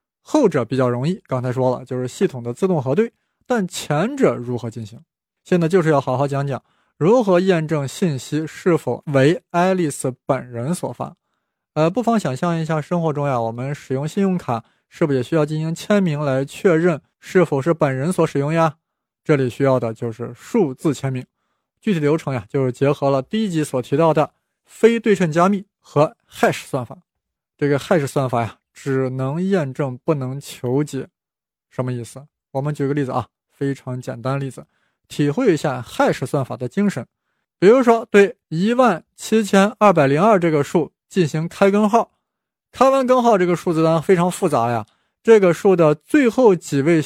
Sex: male